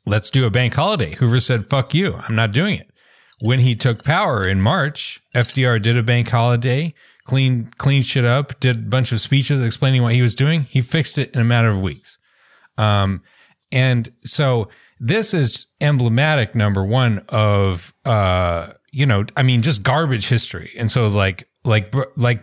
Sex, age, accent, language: male, 40-59, American, English